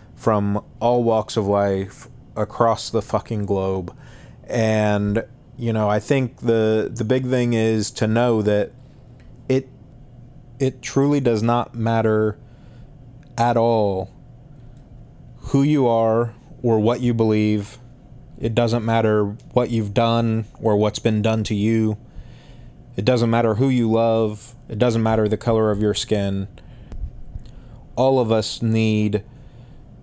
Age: 20-39